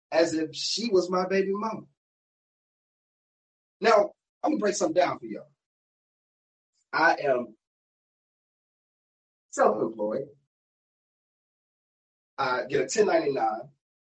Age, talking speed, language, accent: 30-49, 100 wpm, English, American